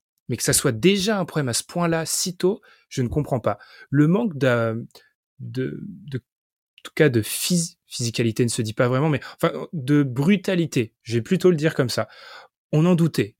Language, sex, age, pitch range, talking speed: French, male, 30-49, 120-175 Hz, 205 wpm